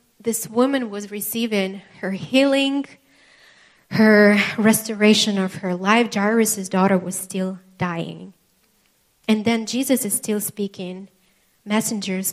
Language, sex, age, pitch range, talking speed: English, female, 20-39, 190-225 Hz, 110 wpm